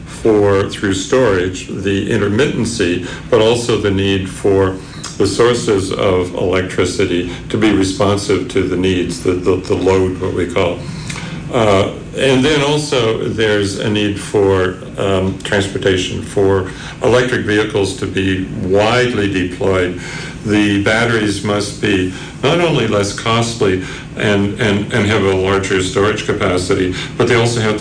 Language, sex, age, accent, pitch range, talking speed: English, male, 60-79, American, 95-115 Hz, 135 wpm